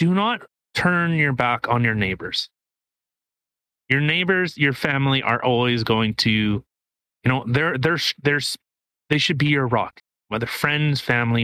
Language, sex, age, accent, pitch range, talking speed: English, male, 30-49, American, 115-145 Hz, 150 wpm